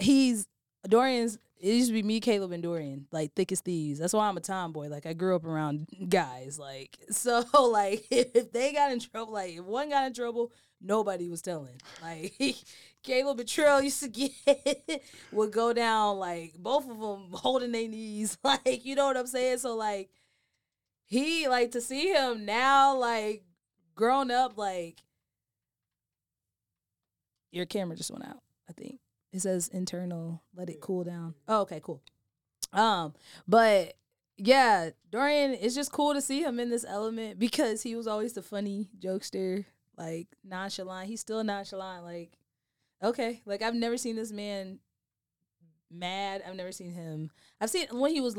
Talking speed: 170 wpm